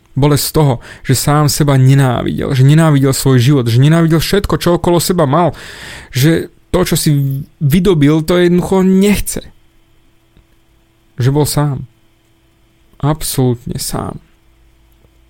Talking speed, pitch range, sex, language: 120 wpm, 125-160 Hz, male, Slovak